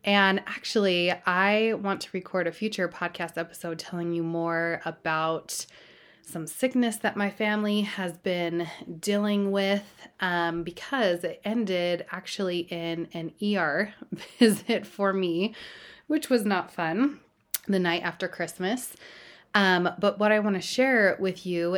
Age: 20-39